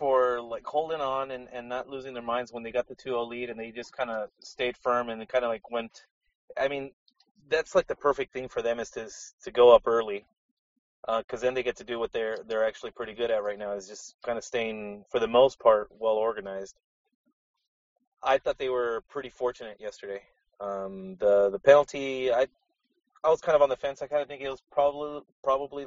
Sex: male